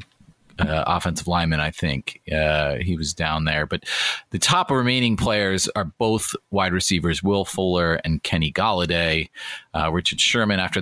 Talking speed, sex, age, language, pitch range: 155 wpm, male, 30-49, English, 85-105 Hz